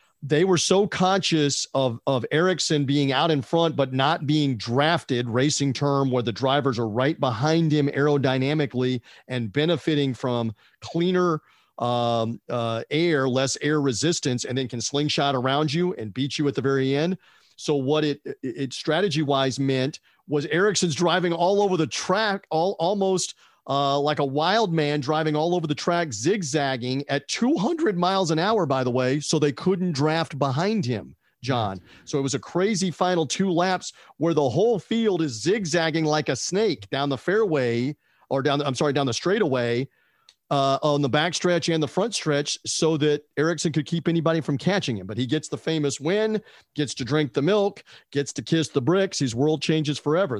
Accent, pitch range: American, 135-165 Hz